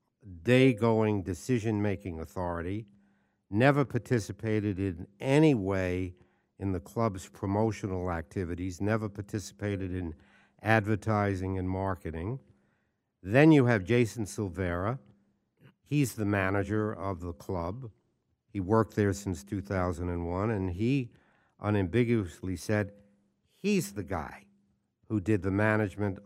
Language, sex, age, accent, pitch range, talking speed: English, male, 60-79, American, 95-115 Hz, 105 wpm